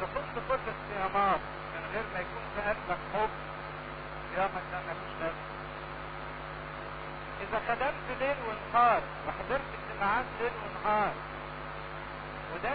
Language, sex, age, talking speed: English, male, 50-69, 115 wpm